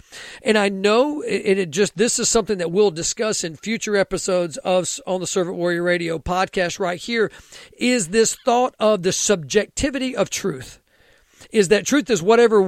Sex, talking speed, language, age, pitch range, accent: male, 175 wpm, English, 50-69, 190-230 Hz, American